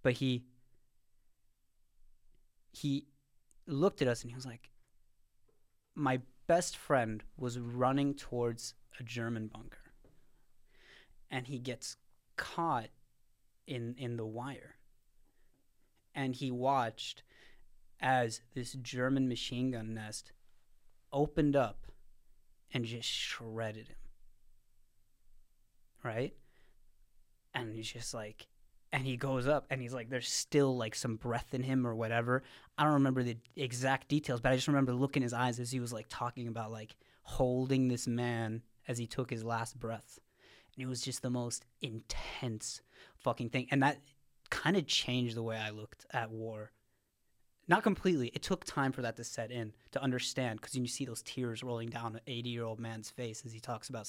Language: English